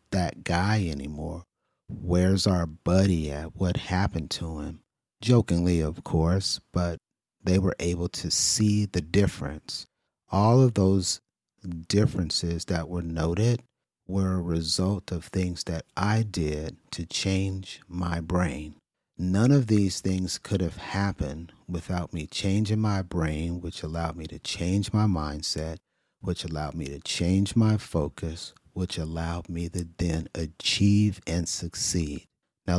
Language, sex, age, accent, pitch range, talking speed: English, male, 40-59, American, 80-95 Hz, 140 wpm